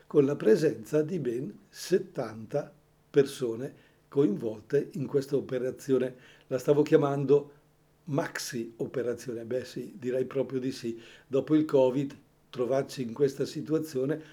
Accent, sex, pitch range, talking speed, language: Italian, male, 130-155 Hz, 120 wpm, Portuguese